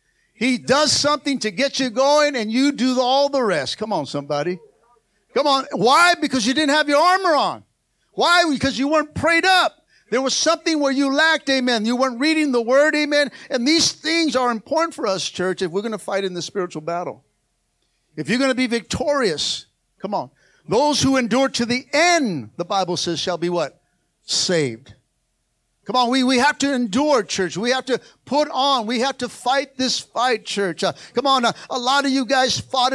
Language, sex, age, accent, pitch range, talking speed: English, male, 50-69, American, 215-275 Hz, 205 wpm